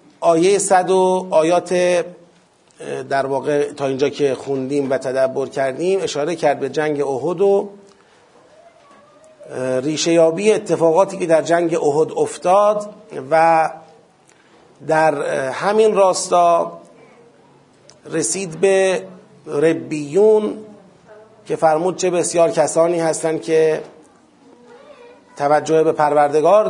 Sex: male